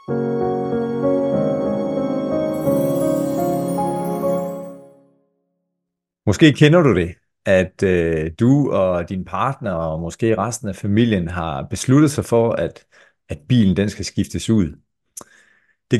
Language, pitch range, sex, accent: Danish, 95-125 Hz, male, native